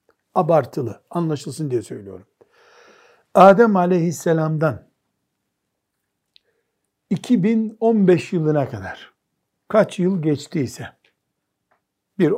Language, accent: Turkish, native